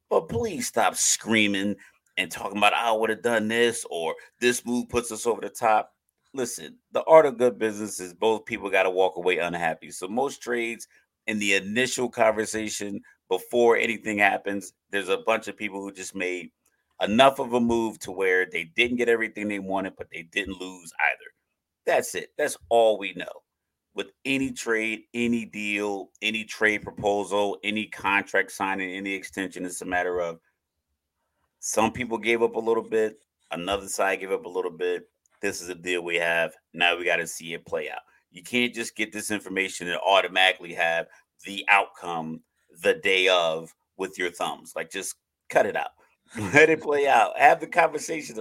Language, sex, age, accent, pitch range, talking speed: English, male, 30-49, American, 95-115 Hz, 185 wpm